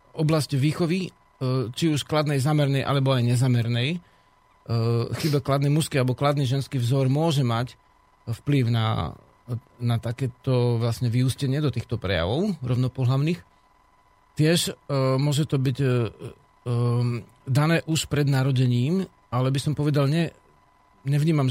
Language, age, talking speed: Slovak, 40-59, 120 wpm